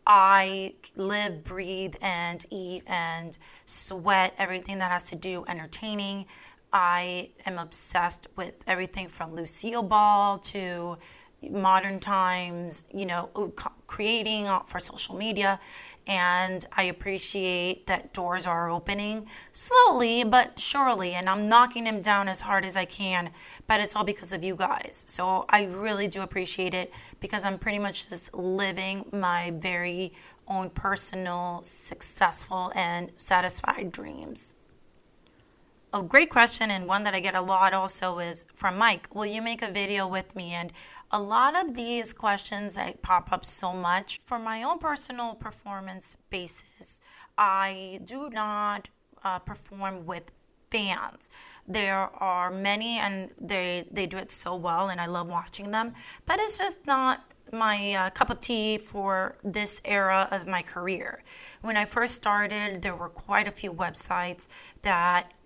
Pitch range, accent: 180-210 Hz, American